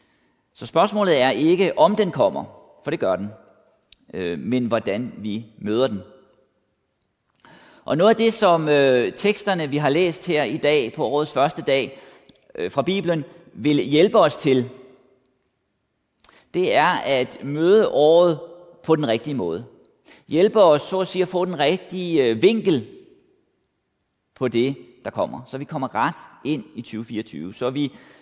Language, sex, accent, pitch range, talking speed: Danish, male, native, 130-180 Hz, 150 wpm